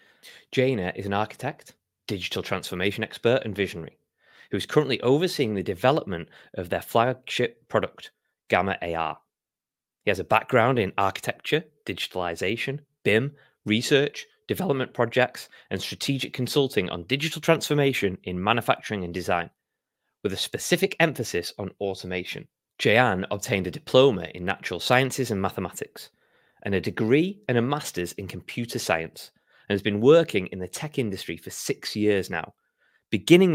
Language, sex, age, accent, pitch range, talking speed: English, male, 30-49, British, 95-140 Hz, 140 wpm